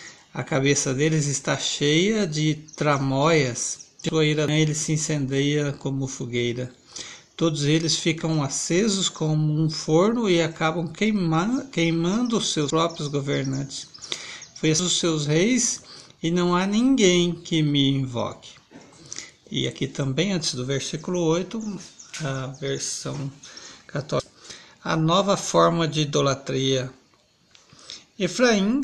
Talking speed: 110 wpm